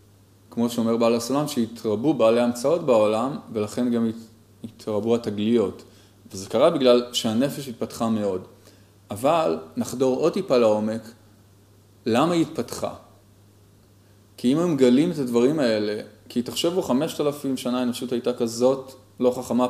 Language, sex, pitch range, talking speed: Hebrew, male, 105-130 Hz, 135 wpm